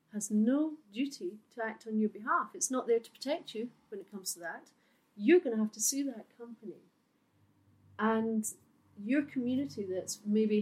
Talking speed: 180 wpm